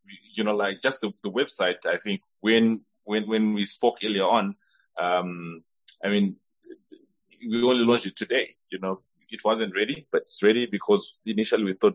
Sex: male